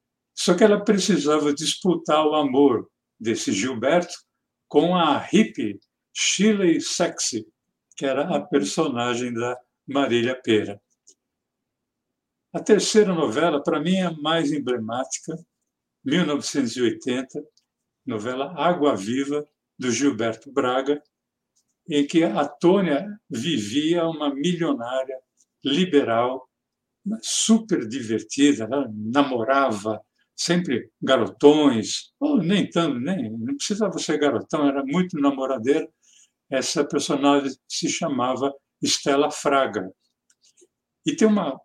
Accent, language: Brazilian, Portuguese